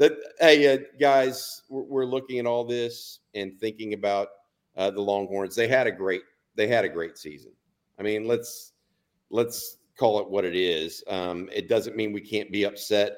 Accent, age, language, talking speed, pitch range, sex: American, 50-69, English, 190 wpm, 95-120 Hz, male